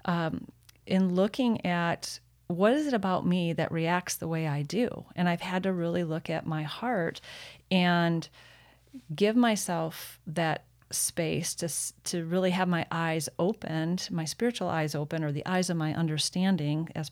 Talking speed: 165 wpm